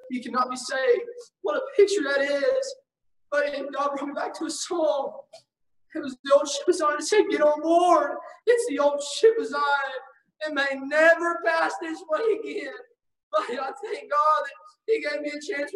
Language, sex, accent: English, male, American